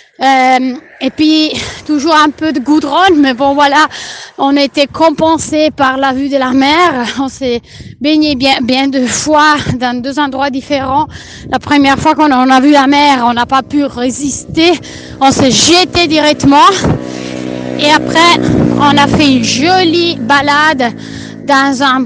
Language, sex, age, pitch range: Italian, female, 30-49, 270-310 Hz